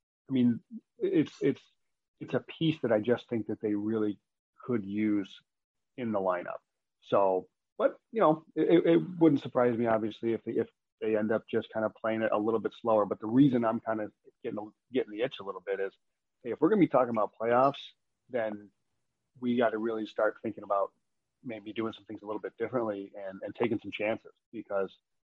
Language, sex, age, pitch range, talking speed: English, male, 30-49, 105-120 Hz, 210 wpm